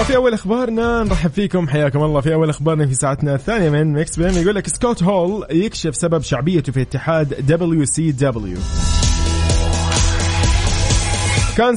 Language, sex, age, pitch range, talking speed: Arabic, male, 20-39, 125-160 Hz, 150 wpm